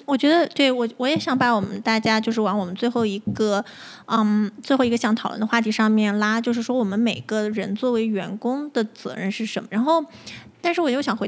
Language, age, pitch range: Chinese, 20-39, 215-260 Hz